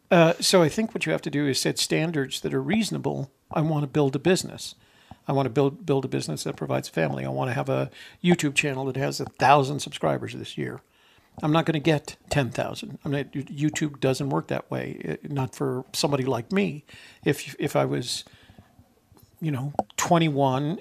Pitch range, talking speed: 135-160 Hz, 205 wpm